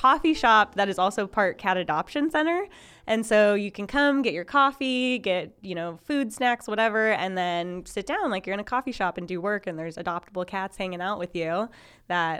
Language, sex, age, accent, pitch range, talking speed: English, female, 10-29, American, 160-195 Hz, 220 wpm